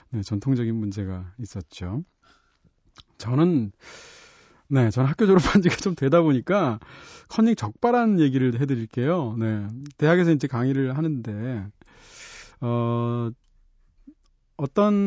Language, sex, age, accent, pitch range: Korean, male, 40-59, native, 120-170 Hz